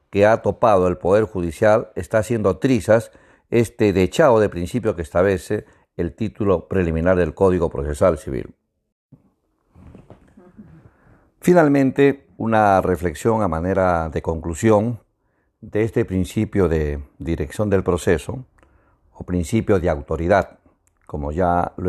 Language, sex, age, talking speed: Spanish, male, 50-69, 120 wpm